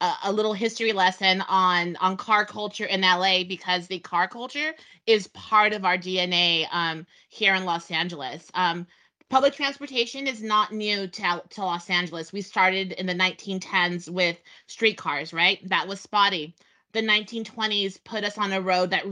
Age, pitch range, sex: 30-49, 185-230 Hz, female